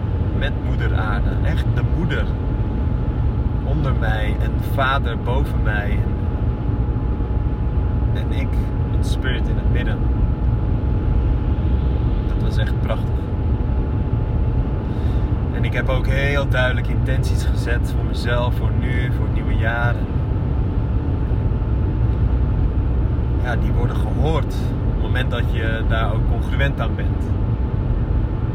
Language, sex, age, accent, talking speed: Dutch, male, 30-49, Dutch, 110 wpm